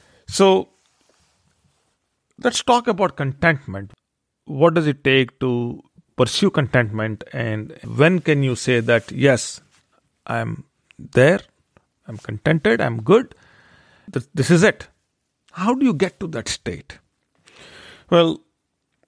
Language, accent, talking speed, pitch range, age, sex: English, Indian, 115 wpm, 120-155 Hz, 40-59, male